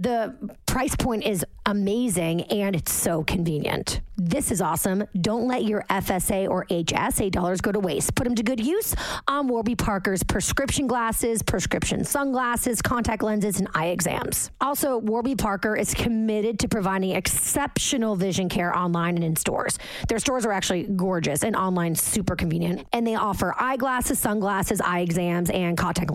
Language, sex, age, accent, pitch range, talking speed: English, female, 30-49, American, 185-245 Hz, 165 wpm